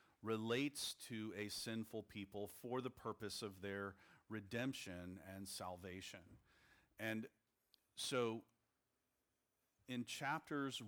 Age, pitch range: 40-59, 95-115 Hz